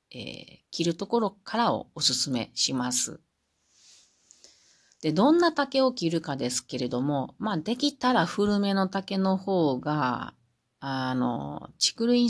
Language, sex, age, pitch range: Japanese, female, 40-59, 135-220 Hz